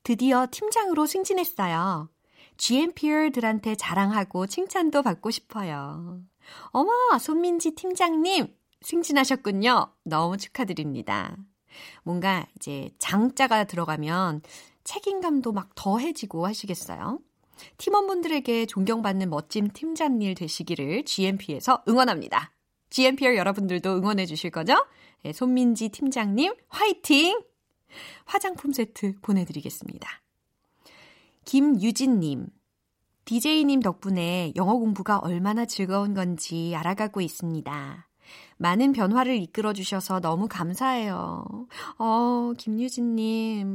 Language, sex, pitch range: Korean, female, 180-260 Hz